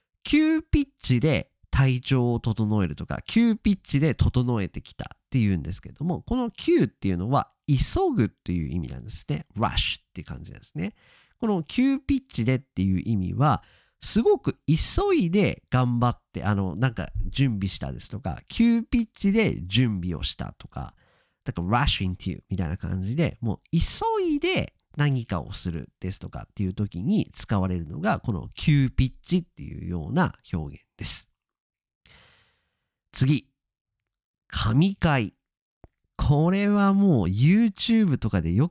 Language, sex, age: Japanese, male, 40-59